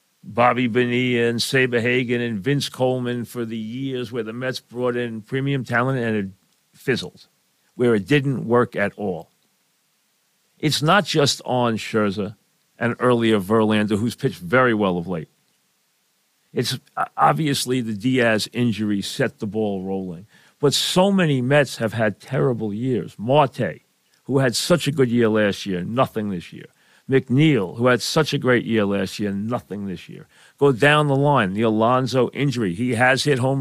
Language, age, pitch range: English, 50-69, 110-140 Hz